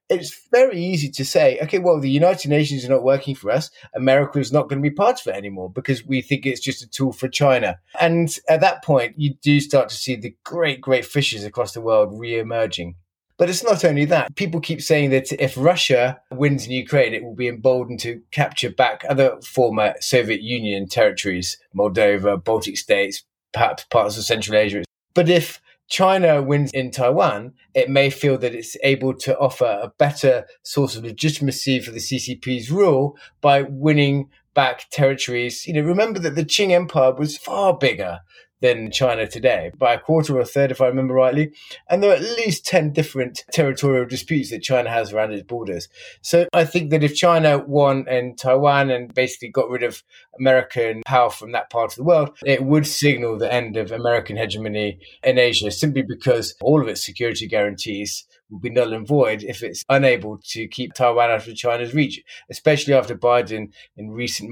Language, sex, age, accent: English, male, 20-39, British